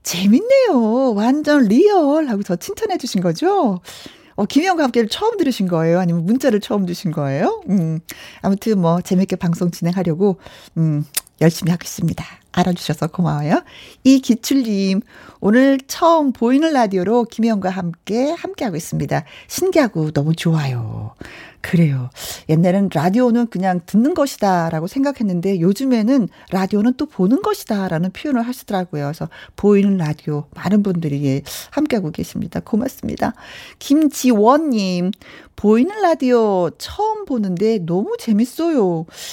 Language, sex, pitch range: Korean, female, 175-265 Hz